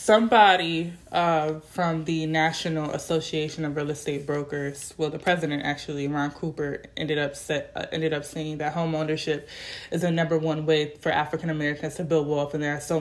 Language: English